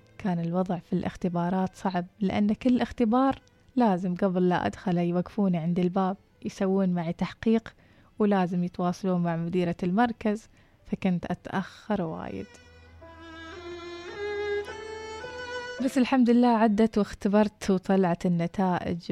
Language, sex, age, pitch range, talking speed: Arabic, female, 20-39, 180-215 Hz, 105 wpm